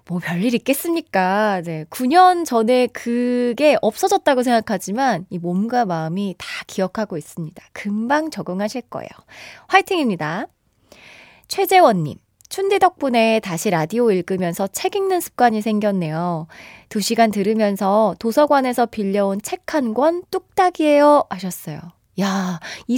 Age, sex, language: 20-39, female, Korean